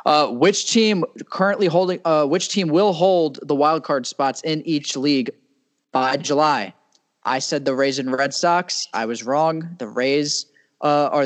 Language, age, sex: English, 10-29, male